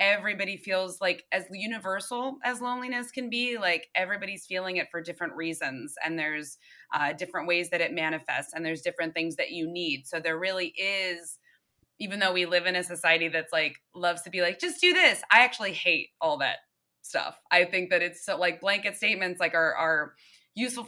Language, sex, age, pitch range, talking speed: English, female, 20-39, 165-205 Hz, 195 wpm